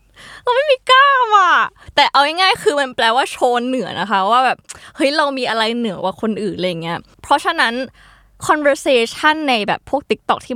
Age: 20-39